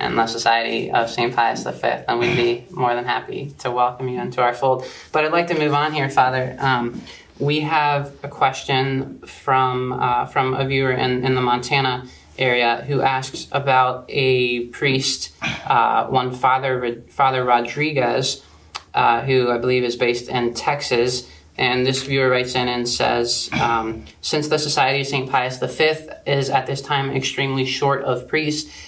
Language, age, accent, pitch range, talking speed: English, 20-39, American, 120-135 Hz, 170 wpm